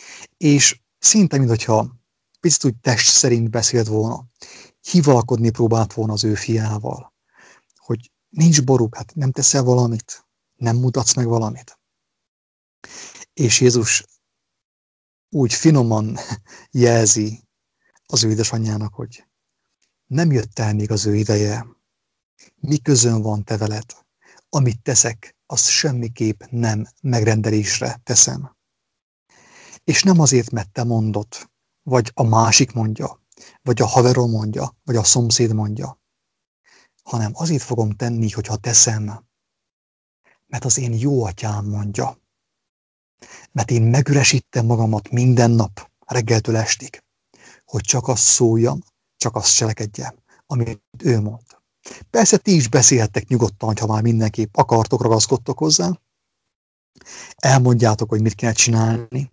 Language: English